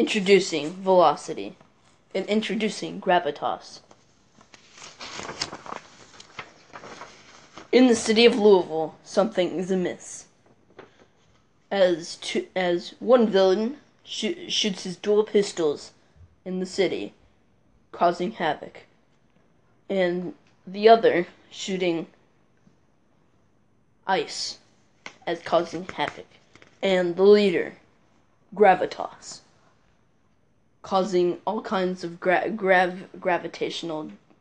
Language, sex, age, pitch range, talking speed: English, female, 20-39, 170-210 Hz, 80 wpm